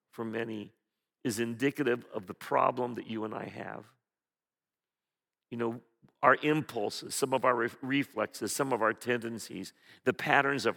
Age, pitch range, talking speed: 50-69, 115-160 Hz, 150 wpm